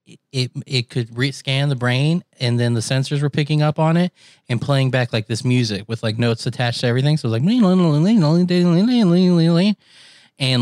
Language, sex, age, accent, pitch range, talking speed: English, male, 20-39, American, 120-145 Hz, 230 wpm